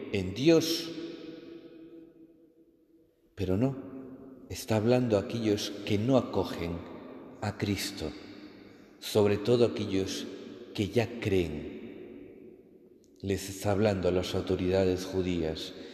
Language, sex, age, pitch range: Spanish, male, 50-69, 100-135 Hz